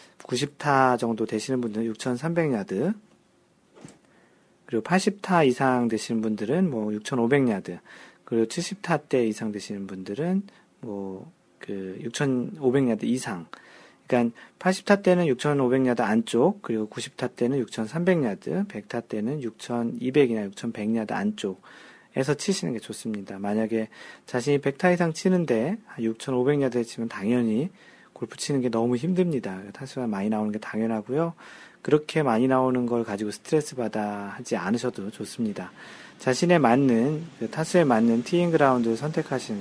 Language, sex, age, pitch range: Korean, male, 40-59, 115-160 Hz